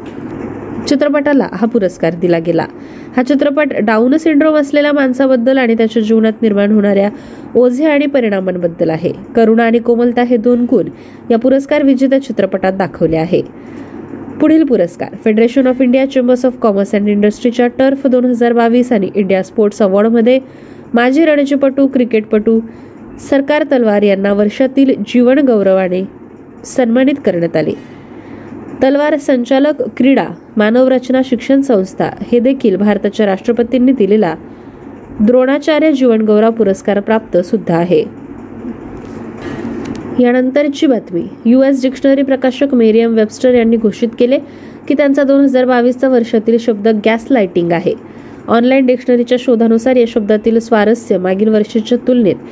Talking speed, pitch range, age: 115 wpm, 215-270 Hz, 20-39